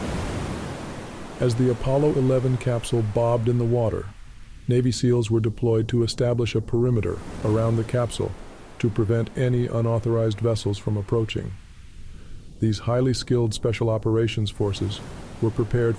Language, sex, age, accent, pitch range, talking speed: English, male, 40-59, American, 110-125 Hz, 130 wpm